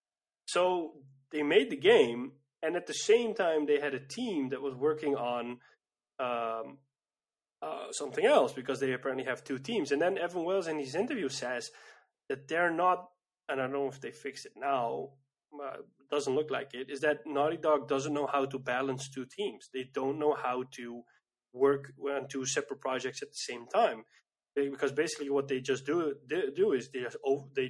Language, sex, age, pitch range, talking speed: English, male, 20-39, 135-170 Hz, 195 wpm